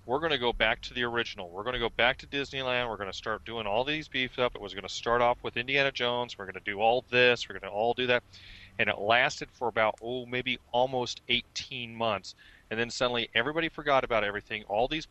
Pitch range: 105-125 Hz